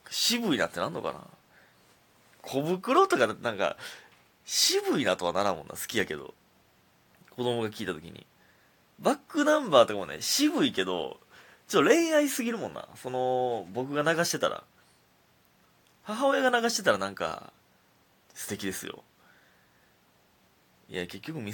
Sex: male